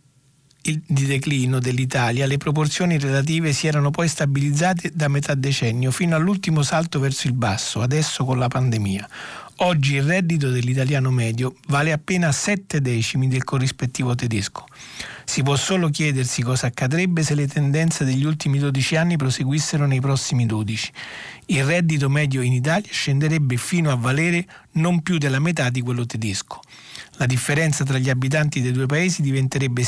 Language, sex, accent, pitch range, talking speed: Italian, male, native, 125-155 Hz, 155 wpm